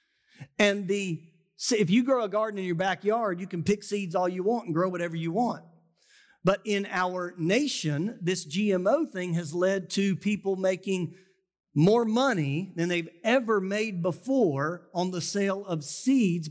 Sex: male